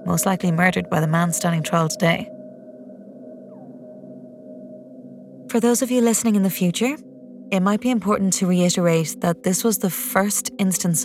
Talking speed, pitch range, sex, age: 155 wpm, 145-185 Hz, female, 30-49